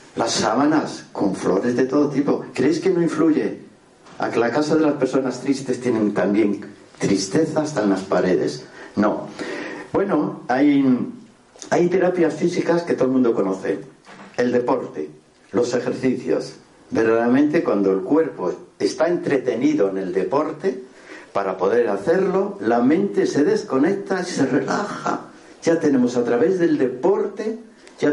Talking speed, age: 145 wpm, 60-79